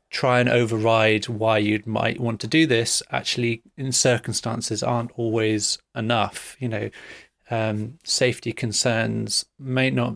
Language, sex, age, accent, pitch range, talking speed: English, male, 30-49, British, 110-125 Hz, 135 wpm